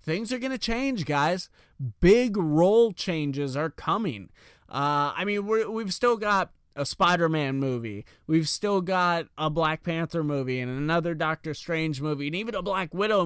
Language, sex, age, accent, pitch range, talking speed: English, male, 20-39, American, 140-180 Hz, 170 wpm